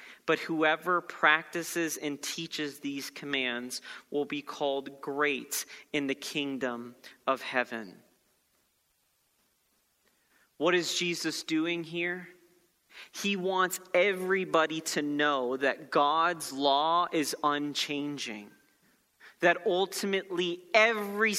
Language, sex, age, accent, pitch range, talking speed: English, male, 30-49, American, 145-180 Hz, 95 wpm